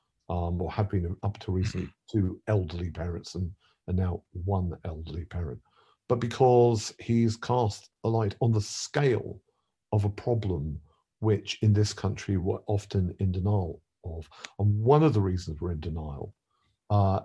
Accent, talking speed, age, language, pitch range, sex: British, 160 wpm, 50-69, English, 90-110 Hz, male